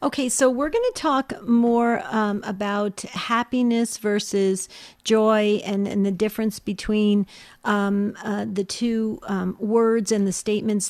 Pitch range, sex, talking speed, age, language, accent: 190-220 Hz, female, 145 wpm, 50-69, English, American